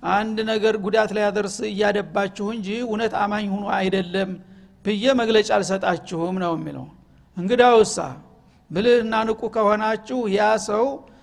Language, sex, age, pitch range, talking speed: Amharic, male, 60-79, 200-225 Hz, 110 wpm